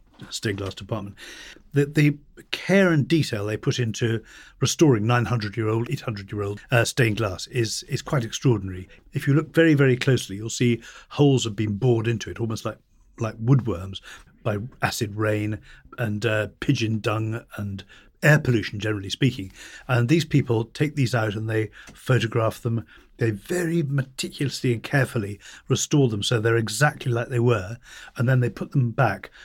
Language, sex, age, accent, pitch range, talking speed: English, male, 50-69, British, 110-135 Hz, 170 wpm